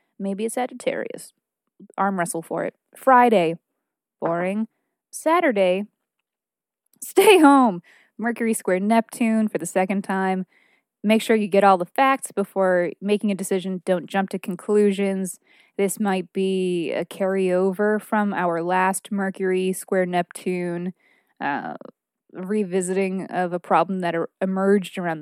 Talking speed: 130 wpm